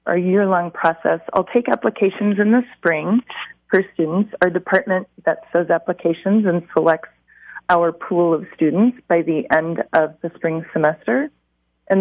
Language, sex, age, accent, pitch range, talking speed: English, female, 30-49, American, 165-200 Hz, 150 wpm